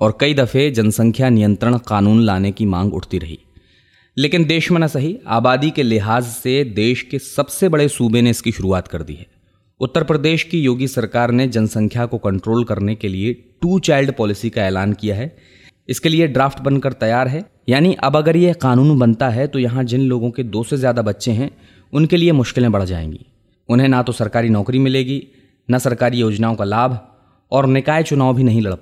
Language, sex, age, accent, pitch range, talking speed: Hindi, male, 20-39, native, 110-145 Hz, 200 wpm